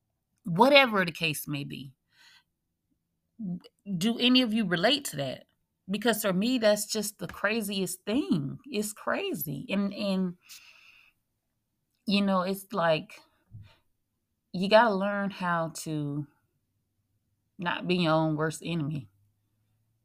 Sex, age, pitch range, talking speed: female, 20-39, 130-175 Hz, 120 wpm